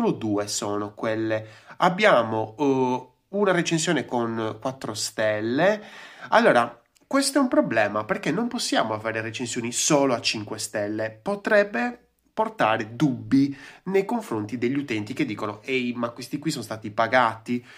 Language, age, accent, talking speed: Italian, 20-39, native, 140 wpm